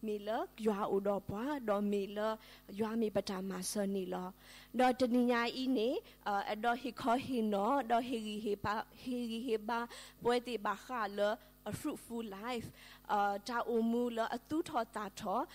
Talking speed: 160 wpm